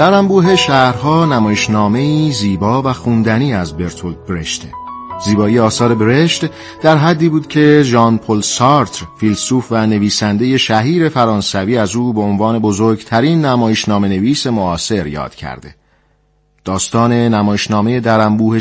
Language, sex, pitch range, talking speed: Persian, male, 105-145 Hz, 125 wpm